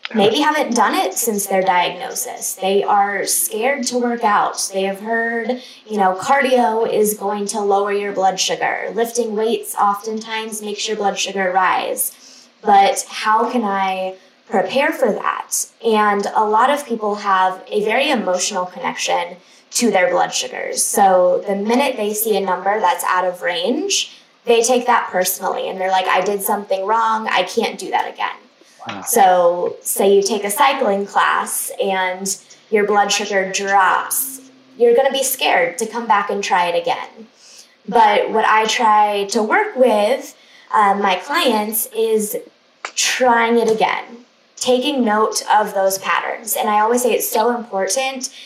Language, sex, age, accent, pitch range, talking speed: English, female, 10-29, American, 195-245 Hz, 165 wpm